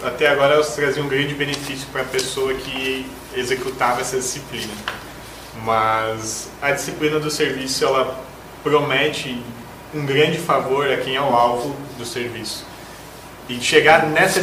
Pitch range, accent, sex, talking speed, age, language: 120-140 Hz, Brazilian, male, 140 wpm, 20-39, English